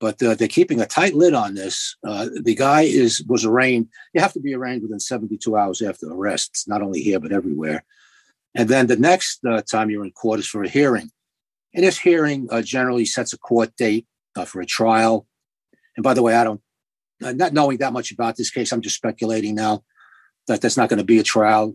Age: 50-69